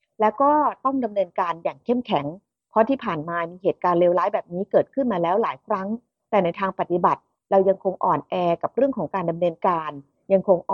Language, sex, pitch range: Thai, female, 180-230 Hz